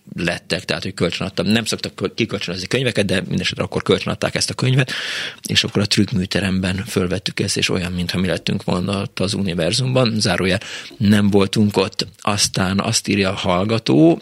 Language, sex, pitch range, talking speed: Hungarian, male, 95-110 Hz, 160 wpm